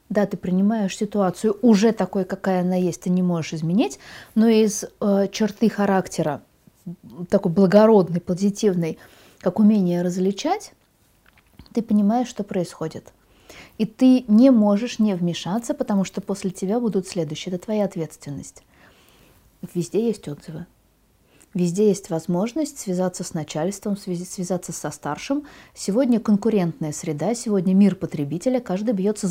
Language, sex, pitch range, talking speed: Russian, female, 180-220 Hz, 130 wpm